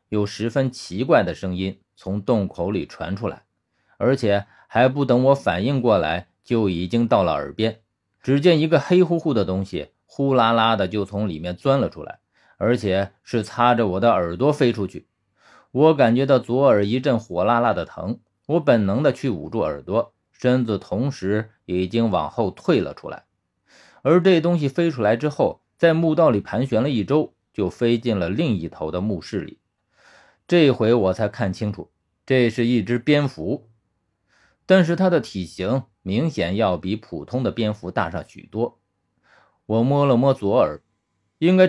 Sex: male